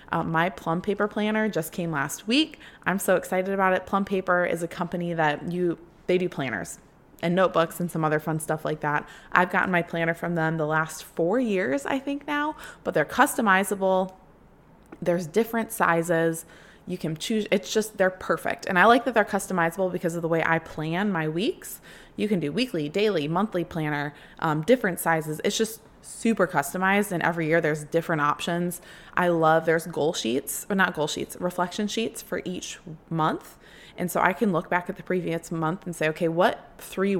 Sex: female